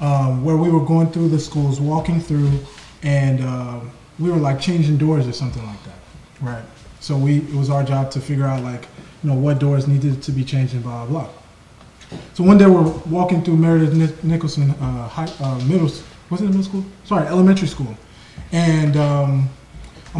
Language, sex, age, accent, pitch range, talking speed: English, male, 20-39, American, 135-170 Hz, 195 wpm